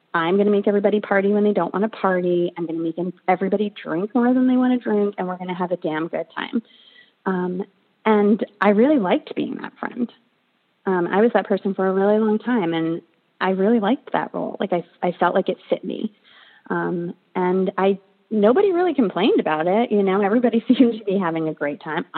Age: 30-49